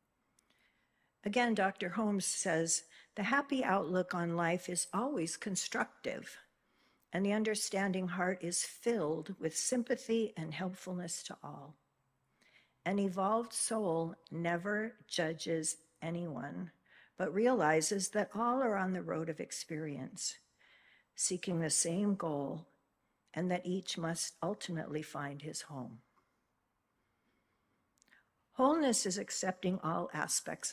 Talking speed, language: 110 wpm, English